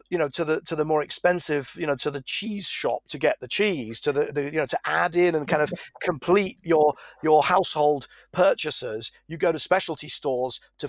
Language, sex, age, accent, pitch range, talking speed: English, male, 50-69, British, 145-190 Hz, 220 wpm